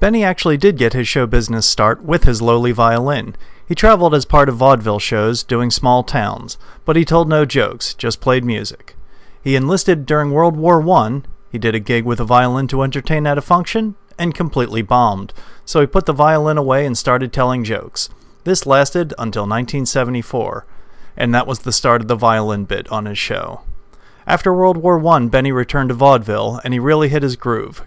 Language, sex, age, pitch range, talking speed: English, male, 40-59, 115-145 Hz, 195 wpm